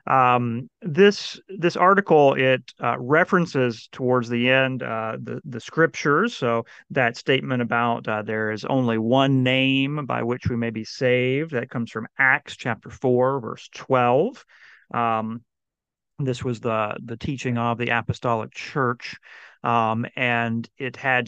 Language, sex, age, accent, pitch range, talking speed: English, male, 40-59, American, 115-135 Hz, 145 wpm